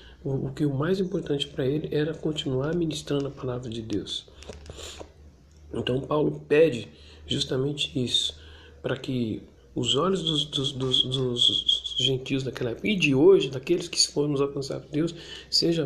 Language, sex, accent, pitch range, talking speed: Portuguese, male, Brazilian, 135-175 Hz, 155 wpm